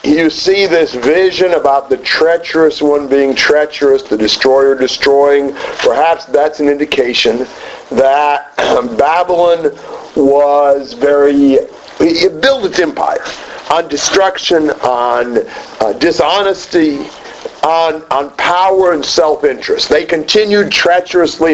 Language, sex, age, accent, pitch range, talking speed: English, male, 50-69, American, 140-195 Hz, 105 wpm